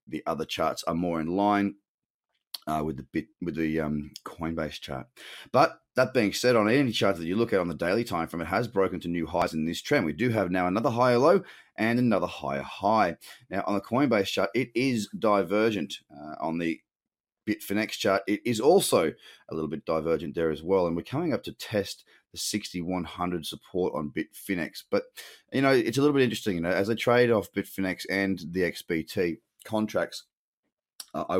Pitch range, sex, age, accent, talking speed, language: 80-115 Hz, male, 30-49, Australian, 205 wpm, English